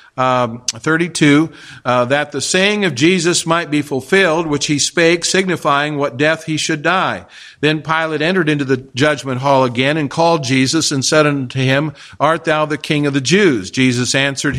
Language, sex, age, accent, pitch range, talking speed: English, male, 50-69, American, 140-170 Hz, 180 wpm